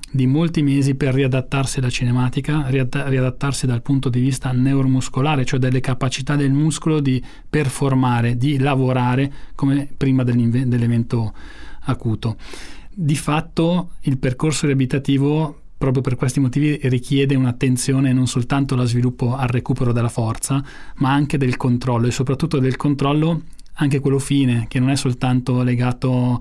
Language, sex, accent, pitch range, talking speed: Italian, male, native, 125-140 Hz, 140 wpm